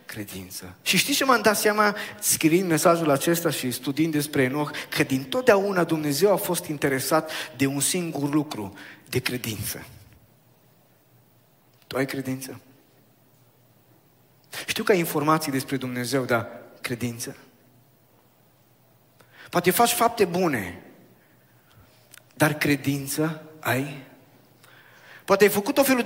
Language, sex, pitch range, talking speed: Romanian, male, 150-245 Hz, 115 wpm